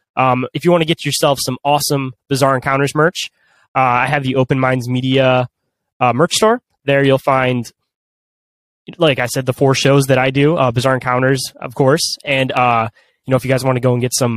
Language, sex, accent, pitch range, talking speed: English, male, American, 125-150 Hz, 215 wpm